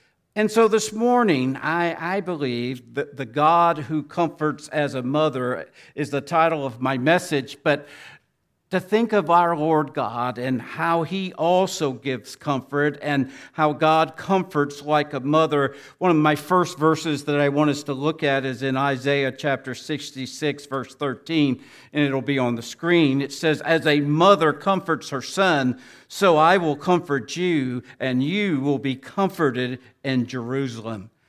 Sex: male